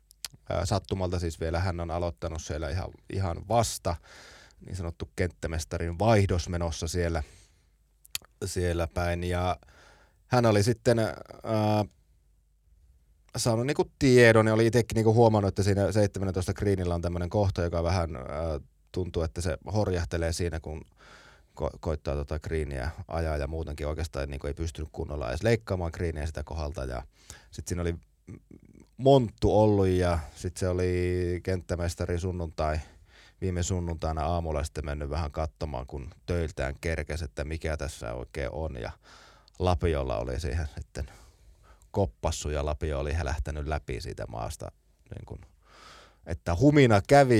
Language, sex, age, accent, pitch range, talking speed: Finnish, male, 30-49, native, 80-100 Hz, 135 wpm